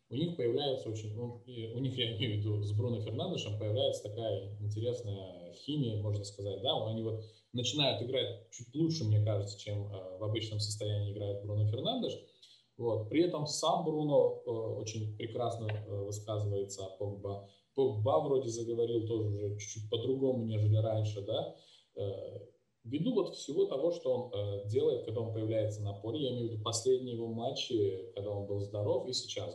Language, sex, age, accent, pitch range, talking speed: Russian, male, 20-39, native, 105-120 Hz, 160 wpm